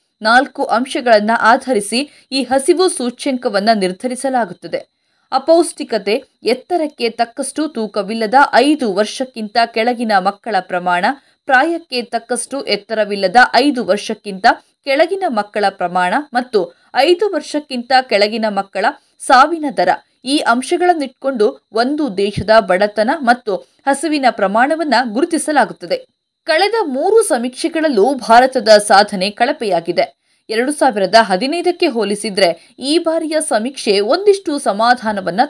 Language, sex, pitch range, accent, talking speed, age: Kannada, female, 210-300 Hz, native, 95 wpm, 20-39